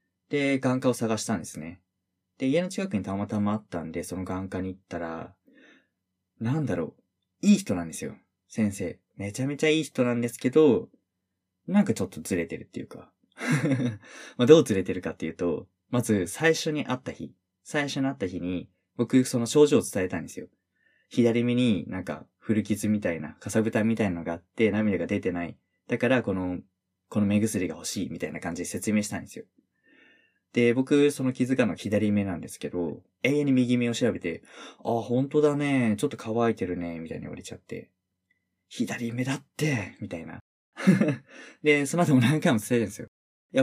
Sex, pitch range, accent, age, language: male, 95-130 Hz, native, 20-39, Japanese